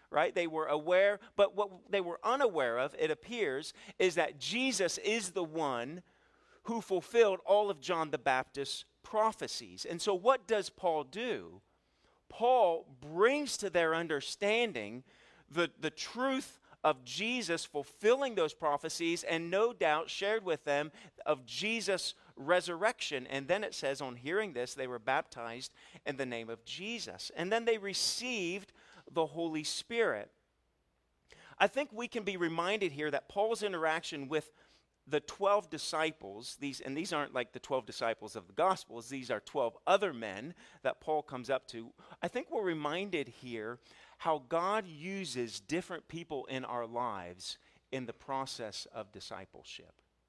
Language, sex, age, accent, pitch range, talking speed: English, male, 40-59, American, 140-205 Hz, 155 wpm